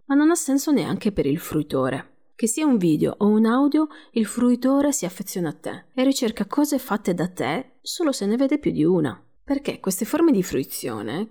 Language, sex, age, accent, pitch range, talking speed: Italian, female, 30-49, native, 170-255 Hz, 205 wpm